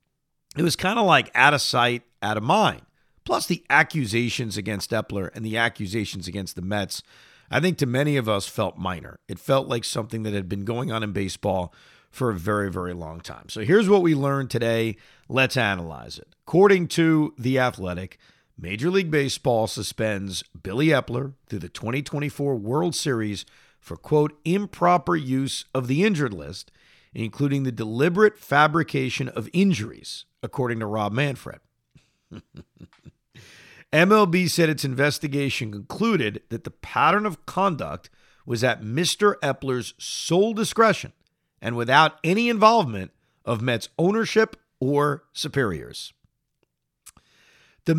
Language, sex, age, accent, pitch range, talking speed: English, male, 50-69, American, 110-155 Hz, 145 wpm